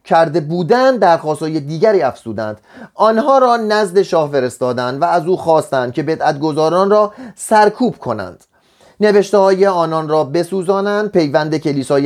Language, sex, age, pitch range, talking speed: Persian, male, 30-49, 135-195 Hz, 135 wpm